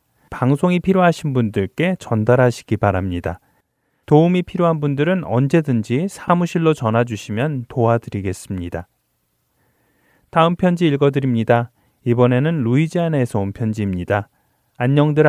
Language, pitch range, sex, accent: Korean, 110-155 Hz, male, native